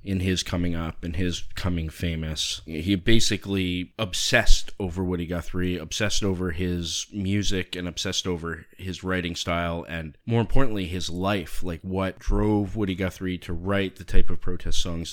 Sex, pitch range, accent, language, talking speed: male, 85-105 Hz, American, English, 165 wpm